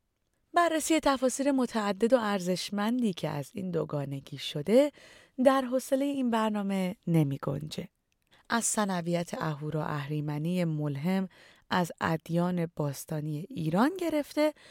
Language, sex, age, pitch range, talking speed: Persian, female, 30-49, 155-235 Hz, 105 wpm